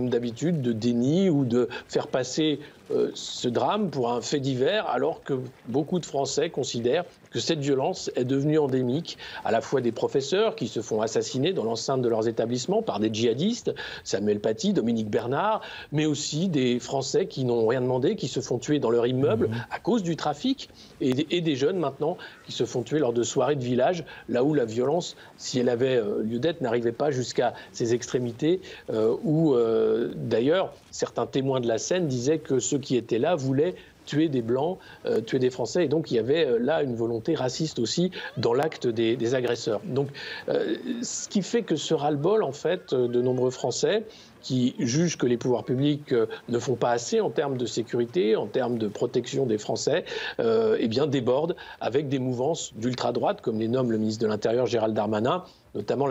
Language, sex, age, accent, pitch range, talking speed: French, male, 50-69, French, 120-165 Hz, 195 wpm